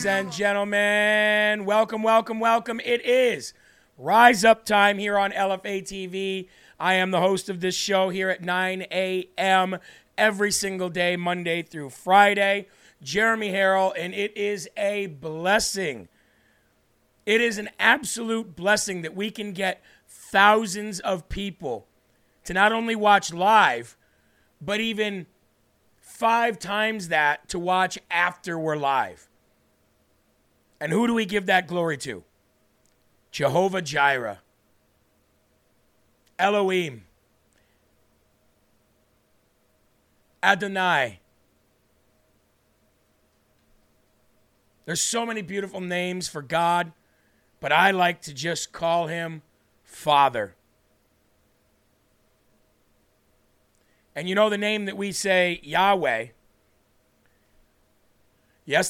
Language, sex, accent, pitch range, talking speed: English, male, American, 140-205 Hz, 105 wpm